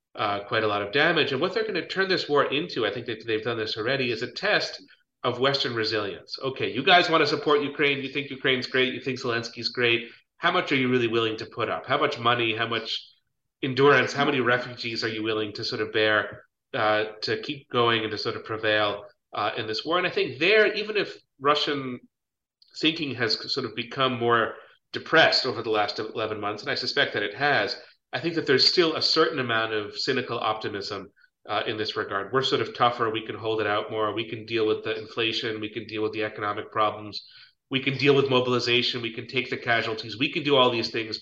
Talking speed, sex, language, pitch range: 235 wpm, male, English, 110-135 Hz